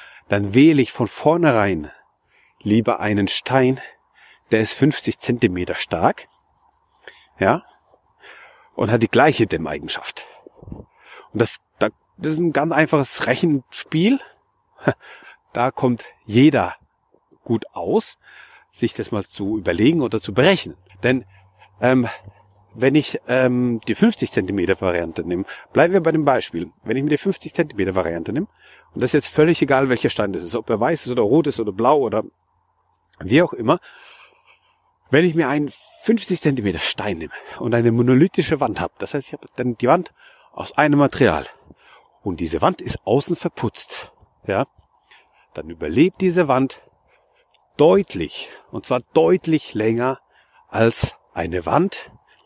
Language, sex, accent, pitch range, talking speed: German, male, German, 115-165 Hz, 145 wpm